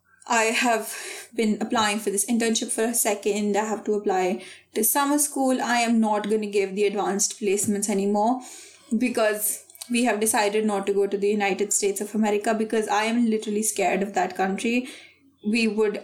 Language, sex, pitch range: English, female, 205-260 Hz